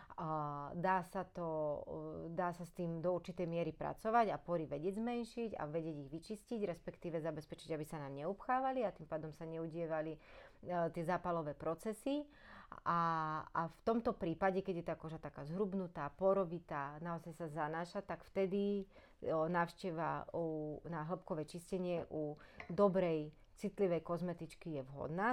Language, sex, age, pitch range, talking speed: Slovak, female, 30-49, 160-180 Hz, 135 wpm